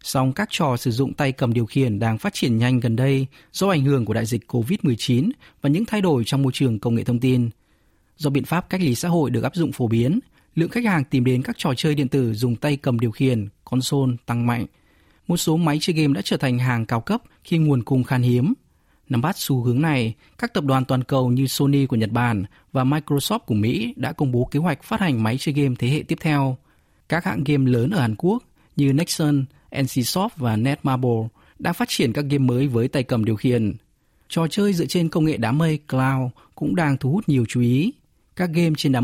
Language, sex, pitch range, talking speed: Vietnamese, male, 120-160 Hz, 240 wpm